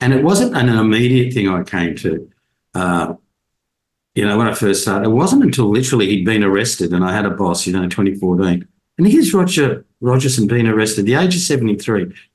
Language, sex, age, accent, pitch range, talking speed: English, male, 50-69, Australian, 95-135 Hz, 205 wpm